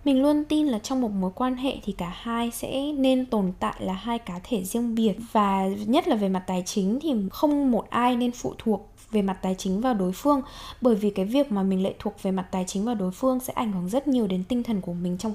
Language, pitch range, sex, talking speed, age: Vietnamese, 195-255 Hz, female, 270 wpm, 10-29